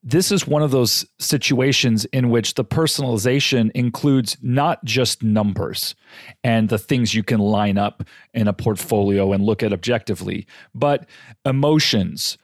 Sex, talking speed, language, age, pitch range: male, 145 wpm, English, 40-59, 115-155 Hz